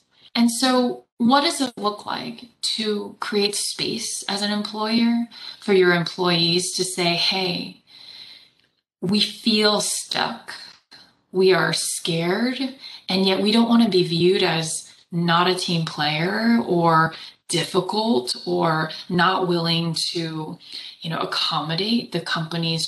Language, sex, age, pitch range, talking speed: English, female, 20-39, 170-235 Hz, 130 wpm